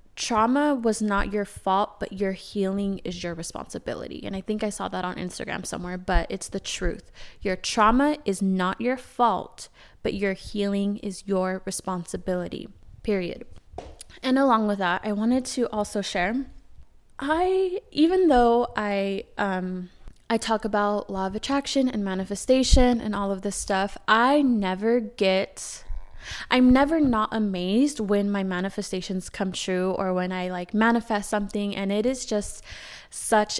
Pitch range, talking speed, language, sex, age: 190-225 Hz, 155 wpm, English, female, 20-39